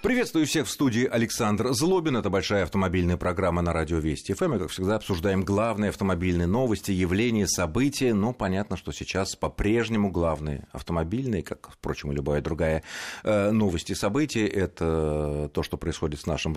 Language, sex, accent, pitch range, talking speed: Russian, male, native, 80-105 Hz, 160 wpm